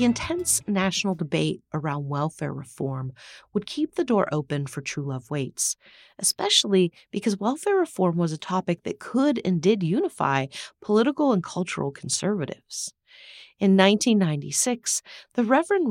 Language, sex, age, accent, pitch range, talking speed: English, female, 40-59, American, 145-215 Hz, 135 wpm